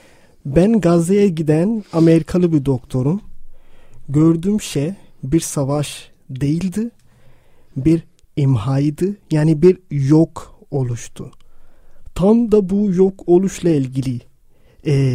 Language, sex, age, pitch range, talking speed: Turkish, male, 40-59, 140-170 Hz, 95 wpm